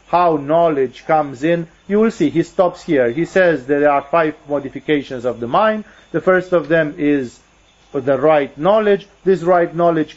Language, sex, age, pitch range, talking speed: English, male, 40-59, 135-170 Hz, 175 wpm